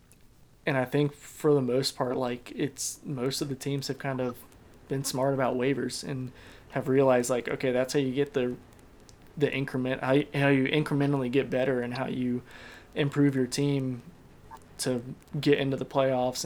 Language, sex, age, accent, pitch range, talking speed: English, male, 20-39, American, 125-140 Hz, 180 wpm